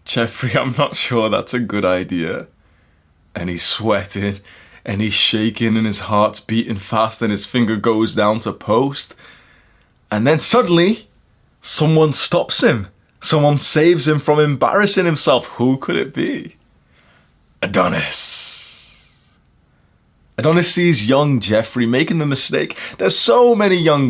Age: 20-39